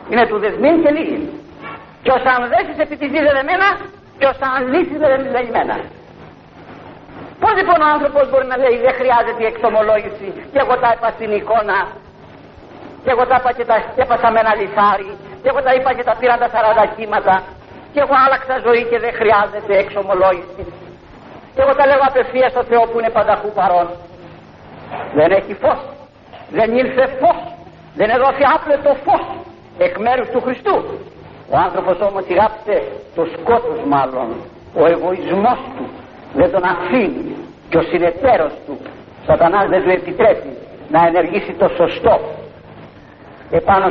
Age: 50-69